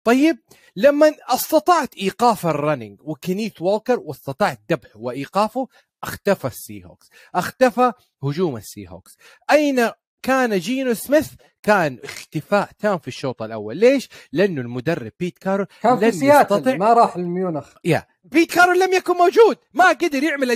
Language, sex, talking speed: Arabic, male, 125 wpm